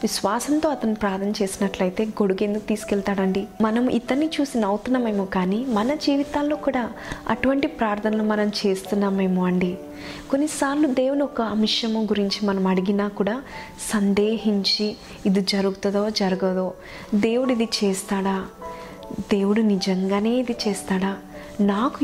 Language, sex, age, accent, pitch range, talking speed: Telugu, female, 20-39, native, 200-245 Hz, 105 wpm